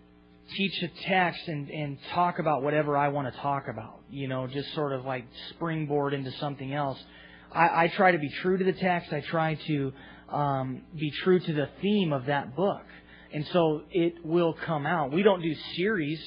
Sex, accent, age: male, American, 30-49